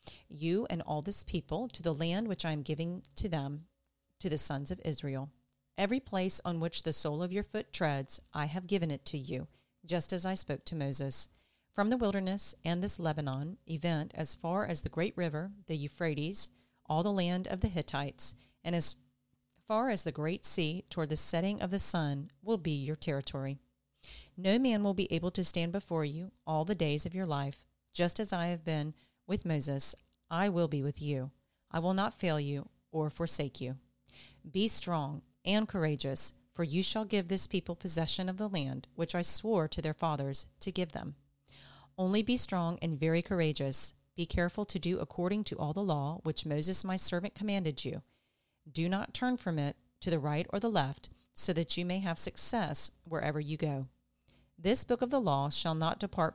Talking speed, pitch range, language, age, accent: 200 wpm, 145-190 Hz, English, 40-59, American